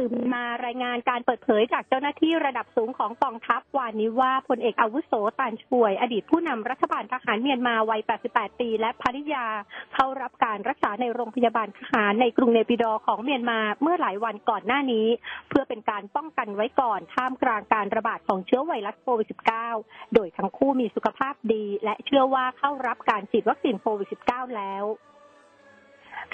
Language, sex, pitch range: Thai, female, 220-265 Hz